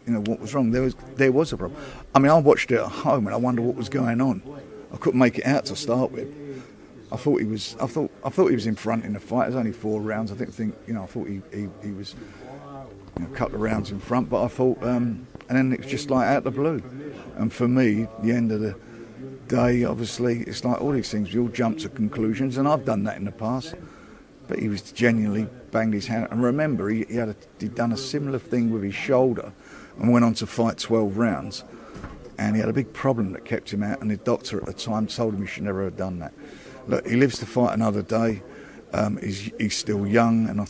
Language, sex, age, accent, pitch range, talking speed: English, male, 50-69, British, 105-130 Hz, 255 wpm